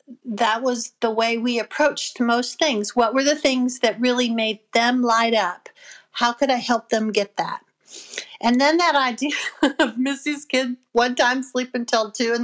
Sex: female